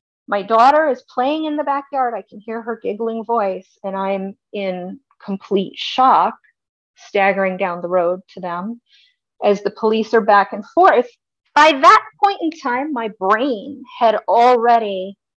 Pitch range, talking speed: 195-245 Hz, 155 wpm